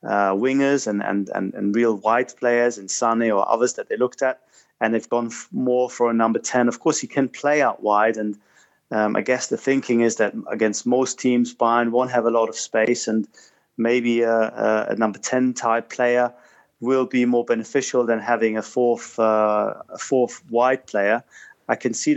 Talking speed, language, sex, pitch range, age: 205 wpm, English, male, 110-125 Hz, 30-49